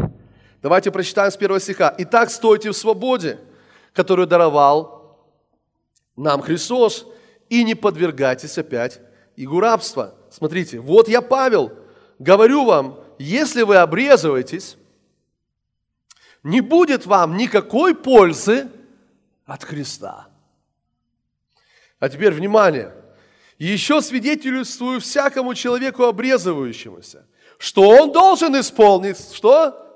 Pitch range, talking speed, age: 180-260 Hz, 95 wpm, 30-49